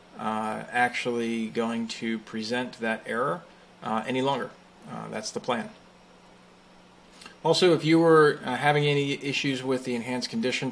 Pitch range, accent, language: 115-140 Hz, American, English